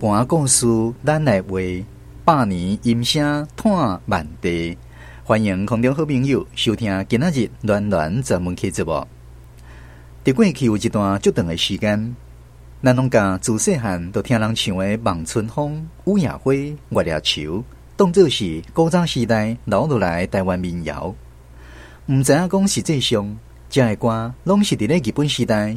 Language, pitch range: Chinese, 85-130 Hz